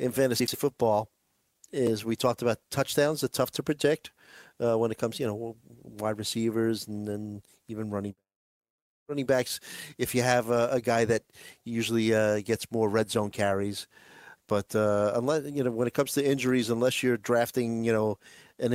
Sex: male